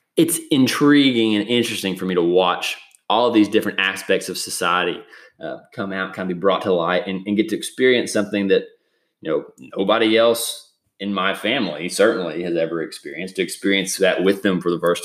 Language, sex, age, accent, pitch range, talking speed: English, male, 20-39, American, 95-115 Hz, 200 wpm